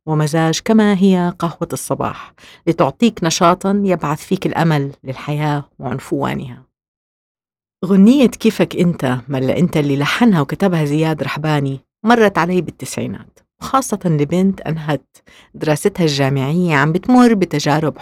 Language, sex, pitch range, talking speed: English, female, 145-190 Hz, 110 wpm